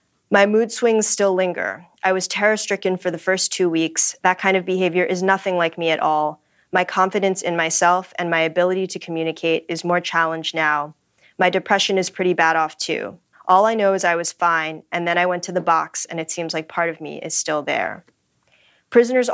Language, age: English, 20-39